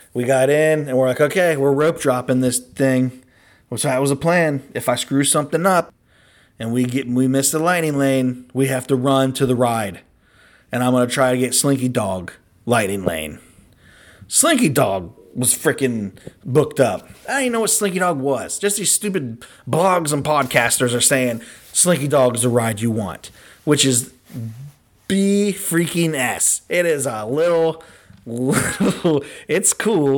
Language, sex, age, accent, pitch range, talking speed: English, male, 30-49, American, 125-165 Hz, 175 wpm